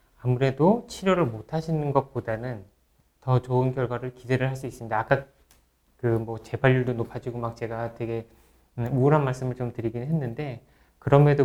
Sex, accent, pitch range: male, native, 120-160 Hz